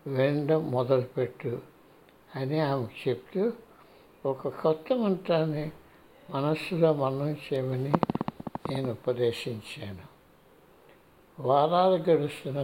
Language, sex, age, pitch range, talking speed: Telugu, male, 60-79, 130-170 Hz, 65 wpm